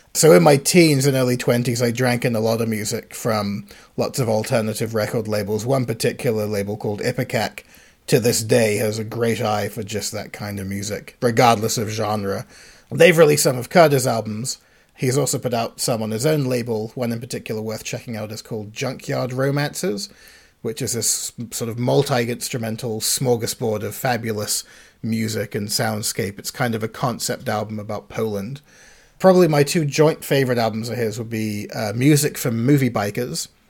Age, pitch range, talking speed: 30-49, 110-130 Hz, 180 wpm